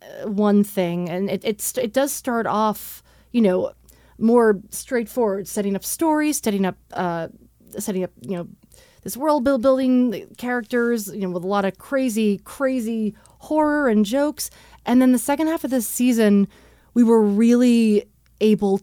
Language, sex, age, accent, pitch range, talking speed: English, female, 30-49, American, 185-230 Hz, 165 wpm